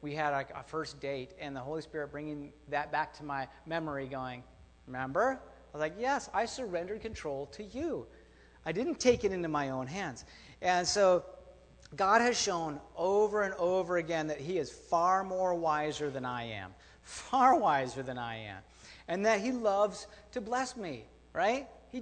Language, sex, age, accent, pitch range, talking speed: English, male, 40-59, American, 145-225 Hz, 180 wpm